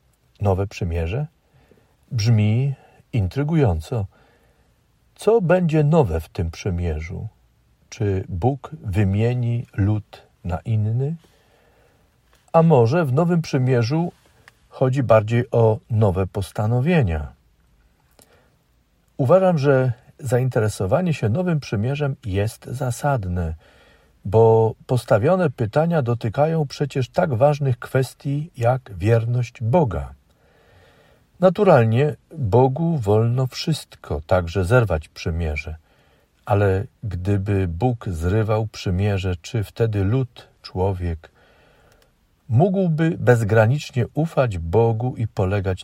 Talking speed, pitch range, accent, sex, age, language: 90 wpm, 95-130 Hz, native, male, 50-69, Polish